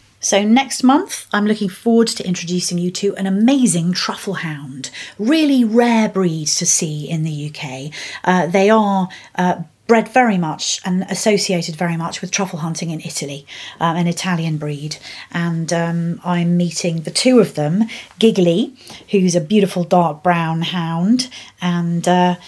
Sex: female